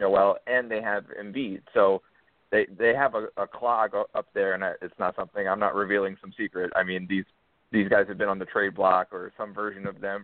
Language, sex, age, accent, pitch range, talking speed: English, male, 20-39, American, 100-125 Hz, 230 wpm